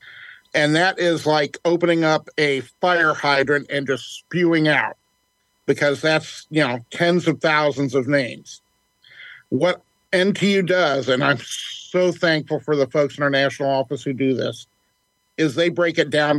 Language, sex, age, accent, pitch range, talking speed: English, male, 50-69, American, 140-170 Hz, 160 wpm